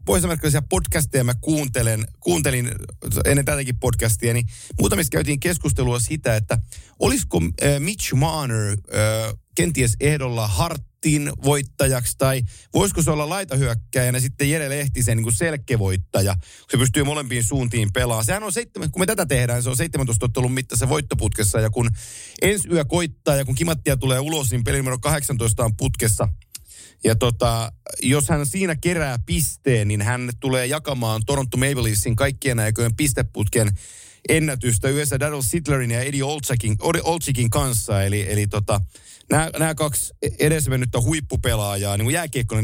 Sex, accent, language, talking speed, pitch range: male, native, Finnish, 145 wpm, 110-145 Hz